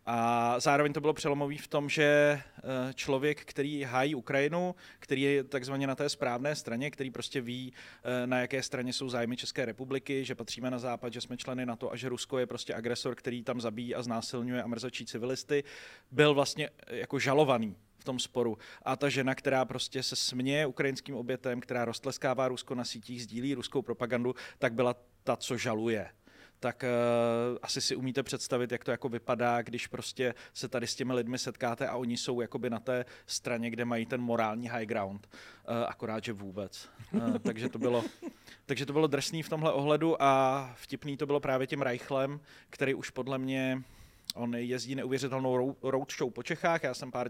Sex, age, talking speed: male, 30-49, 185 wpm